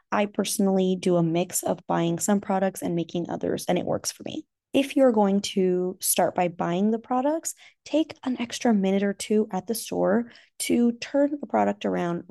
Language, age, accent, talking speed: English, 20-39, American, 195 wpm